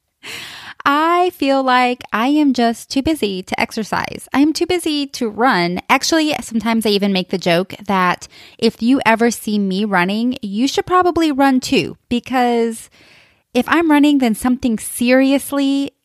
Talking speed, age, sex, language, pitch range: 155 wpm, 20-39, female, English, 205-270 Hz